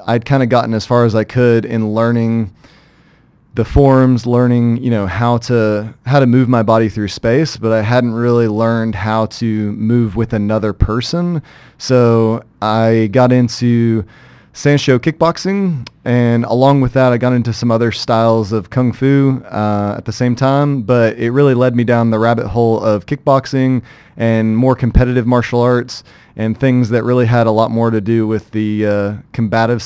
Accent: American